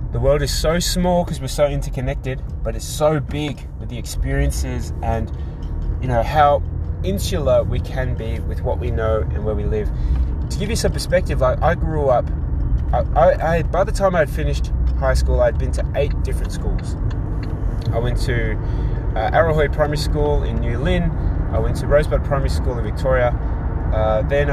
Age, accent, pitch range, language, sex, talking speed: 20-39, Australian, 70-115 Hz, English, male, 190 wpm